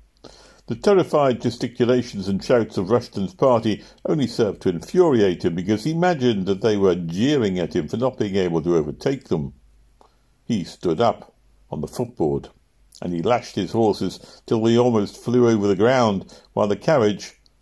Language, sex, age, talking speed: English, male, 60-79, 170 wpm